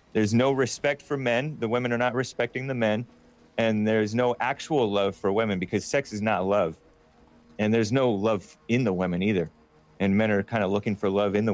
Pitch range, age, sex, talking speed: 105-145 Hz, 30-49, male, 220 wpm